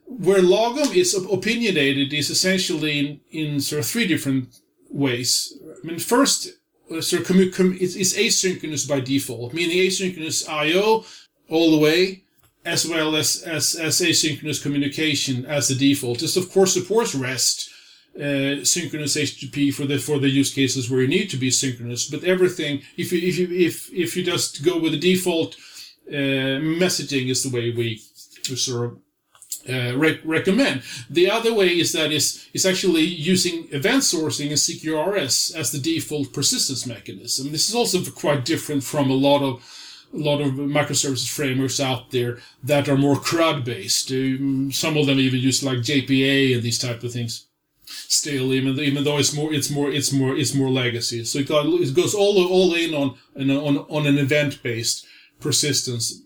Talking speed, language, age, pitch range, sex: 175 wpm, English, 30-49, 135-170 Hz, male